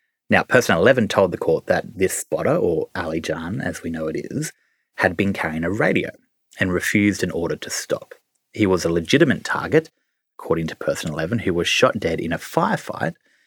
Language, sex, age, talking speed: English, male, 30-49, 195 wpm